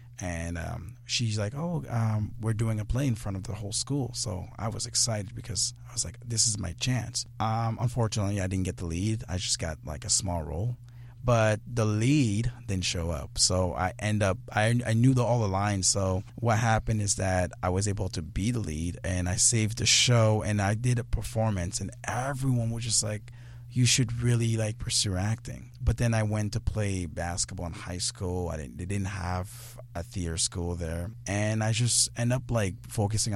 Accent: American